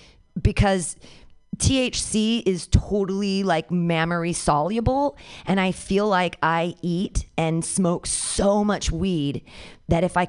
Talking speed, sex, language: 115 wpm, female, English